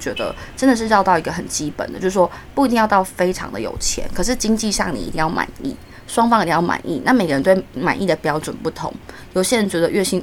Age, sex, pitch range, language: 20-39, female, 170-215 Hz, Chinese